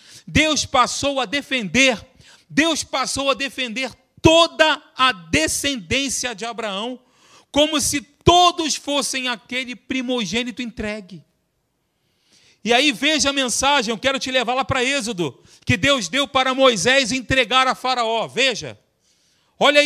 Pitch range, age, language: 230-280 Hz, 40-59, Portuguese